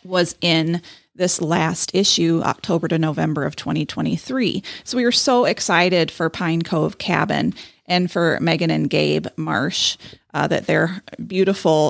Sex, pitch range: female, 165-205 Hz